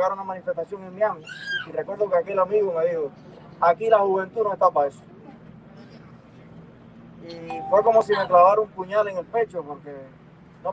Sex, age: male, 20-39